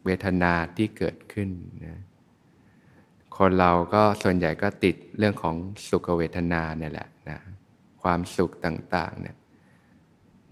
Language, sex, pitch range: Thai, male, 85-105 Hz